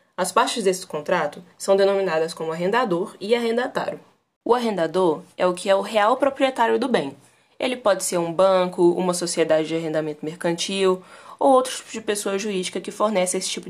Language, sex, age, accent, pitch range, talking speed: Portuguese, female, 20-39, Brazilian, 180-240 Hz, 180 wpm